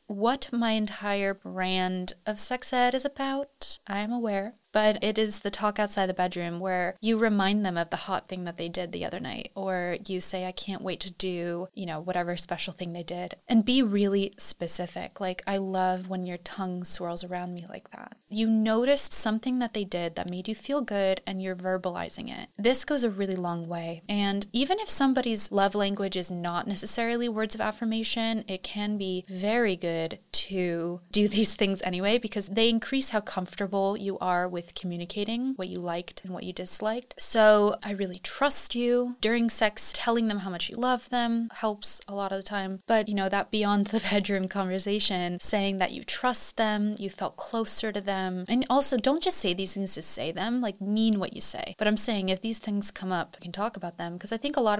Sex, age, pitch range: female, 20-39, 185-225 Hz